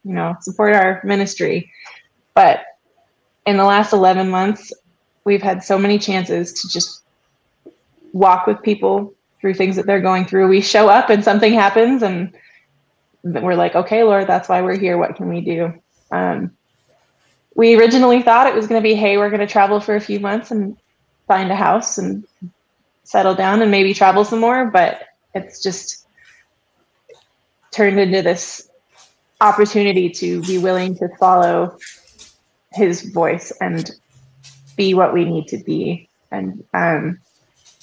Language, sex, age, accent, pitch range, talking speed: English, female, 20-39, American, 180-210 Hz, 155 wpm